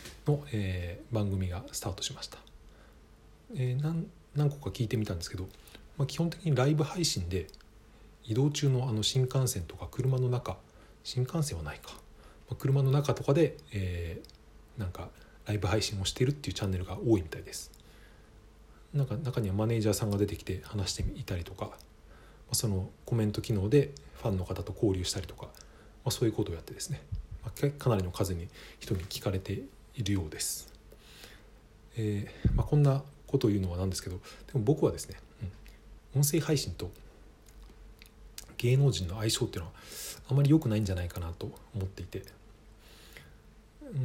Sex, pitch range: male, 95-125 Hz